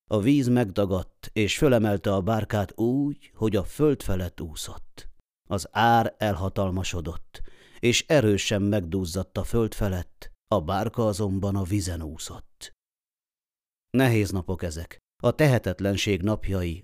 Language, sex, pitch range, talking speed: Hungarian, male, 95-115 Hz, 120 wpm